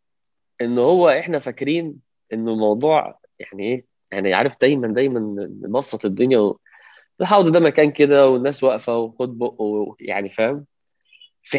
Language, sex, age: Arabic, male, 20-39